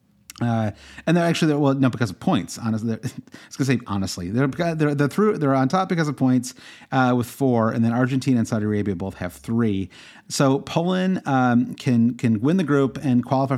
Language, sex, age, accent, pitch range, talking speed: English, male, 30-49, American, 110-140 Hz, 210 wpm